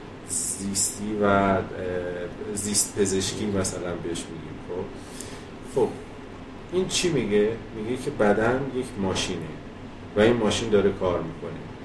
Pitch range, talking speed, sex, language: 100-135 Hz, 110 wpm, male, Persian